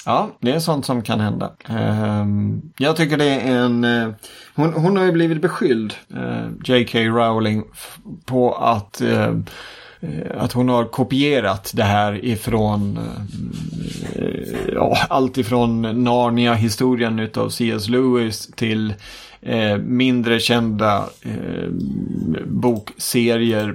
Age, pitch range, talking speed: 30-49, 110-130 Hz, 125 wpm